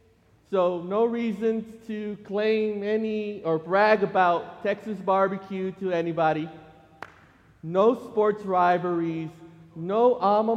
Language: English